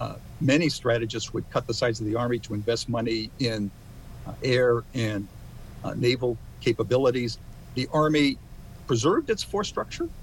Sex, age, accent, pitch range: male, 50-69, American, 115-140 Hz